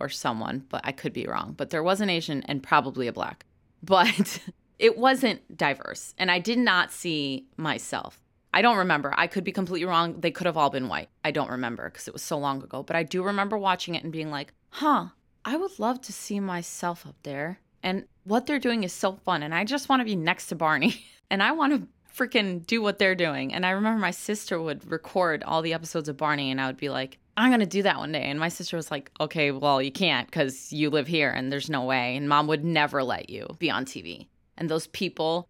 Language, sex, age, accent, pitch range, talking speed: English, female, 20-39, American, 145-205 Hz, 245 wpm